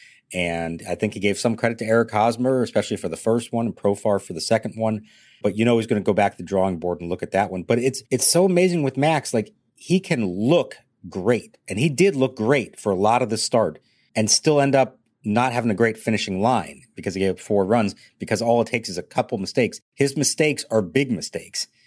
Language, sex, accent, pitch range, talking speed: English, male, American, 95-130 Hz, 245 wpm